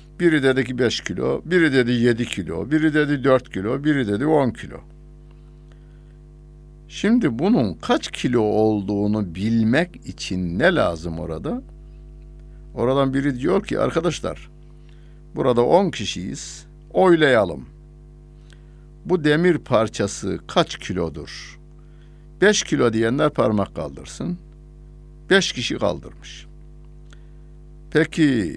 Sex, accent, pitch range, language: male, native, 115-155 Hz, Turkish